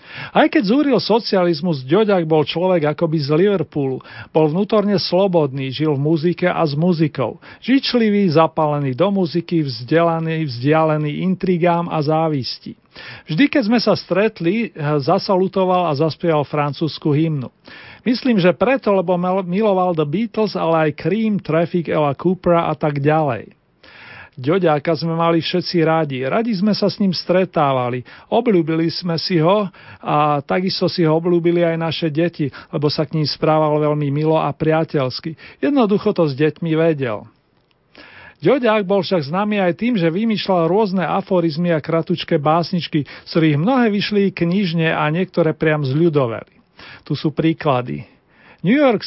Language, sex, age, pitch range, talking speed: Slovak, male, 40-59, 155-190 Hz, 145 wpm